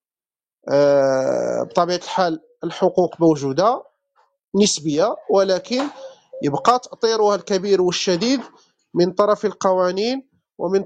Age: 40-59